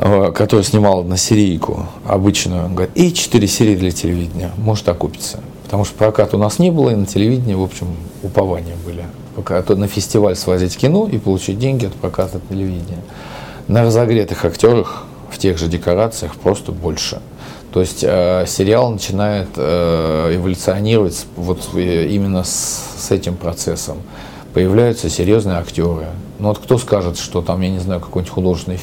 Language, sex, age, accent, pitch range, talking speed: Russian, male, 40-59, native, 85-105 Hz, 150 wpm